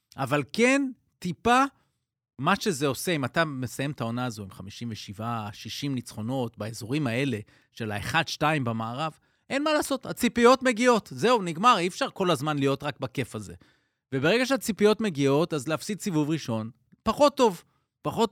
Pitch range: 120-165 Hz